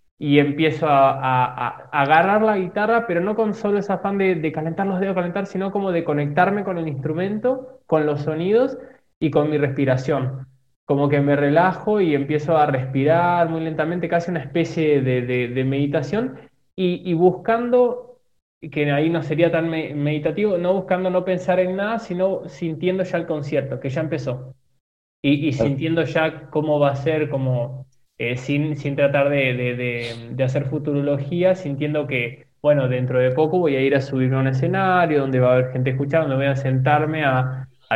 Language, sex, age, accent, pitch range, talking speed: Spanish, male, 20-39, Argentinian, 140-180 Hz, 190 wpm